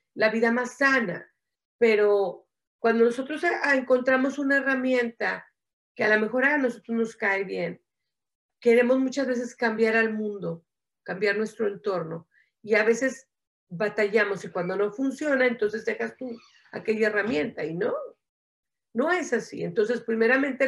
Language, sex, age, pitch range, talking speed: Spanish, female, 40-59, 200-255 Hz, 145 wpm